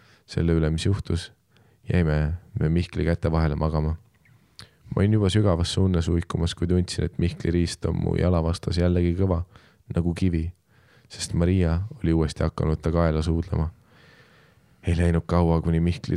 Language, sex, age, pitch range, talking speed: English, male, 20-39, 85-95 Hz, 145 wpm